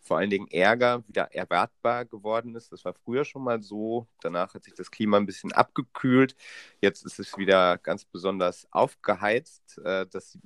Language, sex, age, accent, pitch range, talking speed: German, male, 30-49, German, 95-115 Hz, 180 wpm